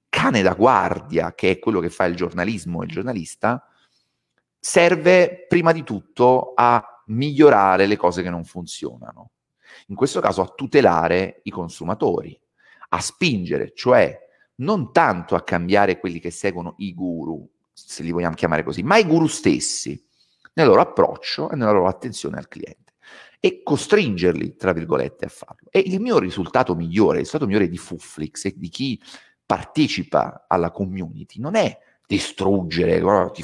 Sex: male